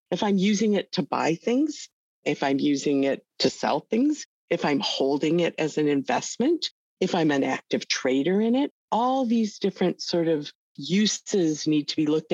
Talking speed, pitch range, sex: 185 wpm, 145-210 Hz, female